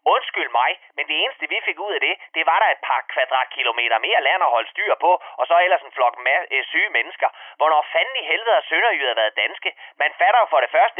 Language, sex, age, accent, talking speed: Danish, male, 30-49, native, 230 wpm